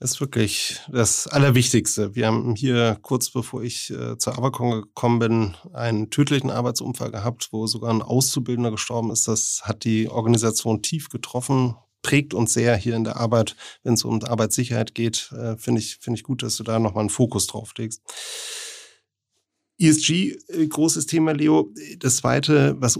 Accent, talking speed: German, 165 wpm